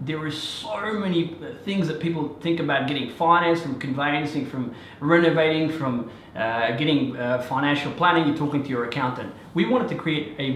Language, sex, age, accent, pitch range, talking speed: English, male, 30-49, Australian, 135-165 Hz, 175 wpm